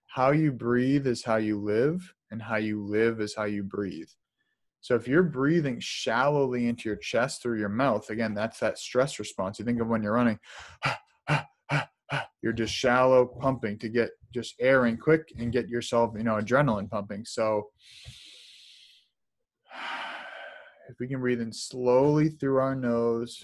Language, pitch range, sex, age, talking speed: English, 110-125 Hz, male, 20-39, 165 wpm